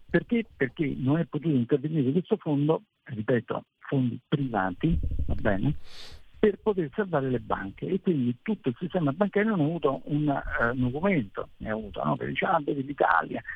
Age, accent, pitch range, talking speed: 60-79, native, 110-155 Hz, 175 wpm